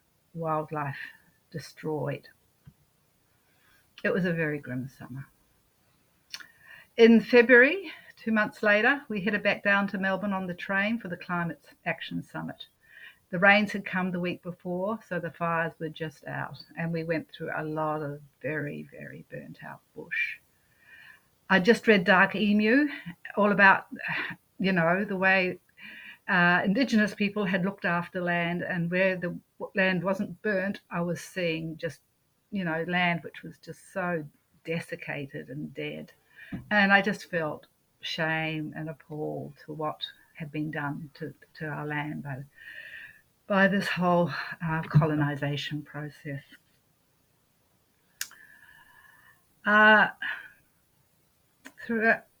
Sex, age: female, 60-79